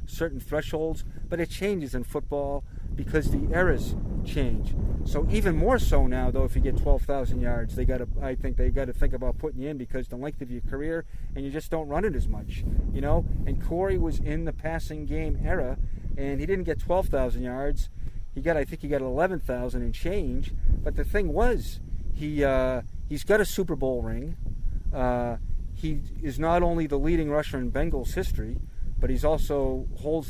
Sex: male